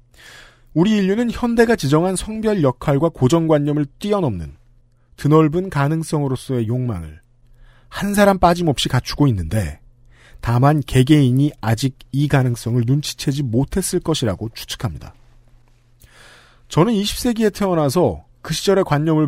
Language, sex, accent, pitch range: Korean, male, native, 120-180 Hz